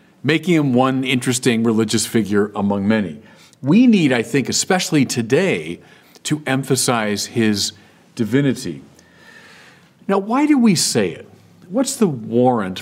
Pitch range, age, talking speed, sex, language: 110-145 Hz, 50-69, 125 wpm, male, English